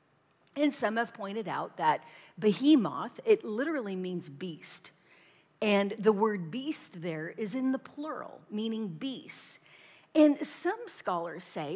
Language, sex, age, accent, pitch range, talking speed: English, female, 40-59, American, 180-260 Hz, 135 wpm